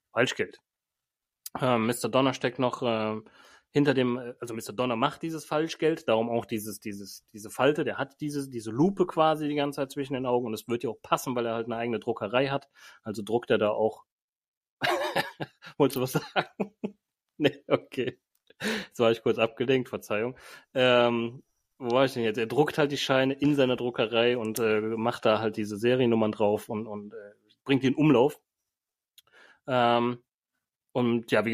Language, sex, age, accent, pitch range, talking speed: German, male, 30-49, German, 115-140 Hz, 180 wpm